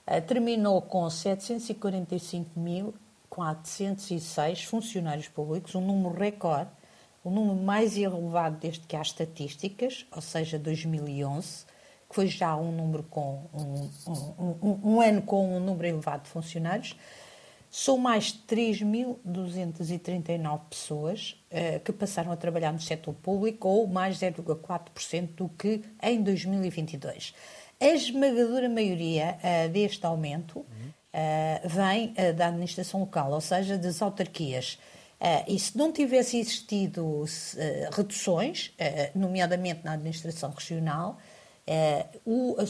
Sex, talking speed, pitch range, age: female, 110 wpm, 160-200 Hz, 50-69